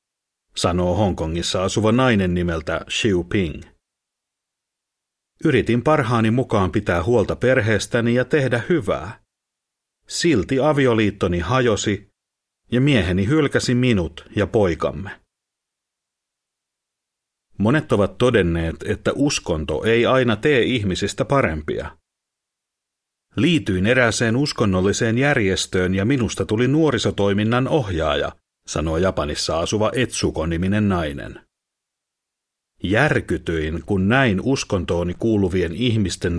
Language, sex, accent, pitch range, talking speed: Finnish, male, native, 90-120 Hz, 90 wpm